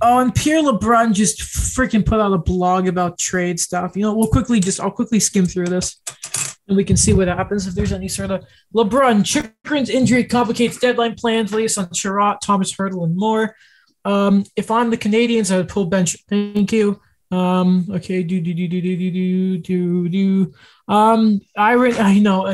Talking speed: 175 wpm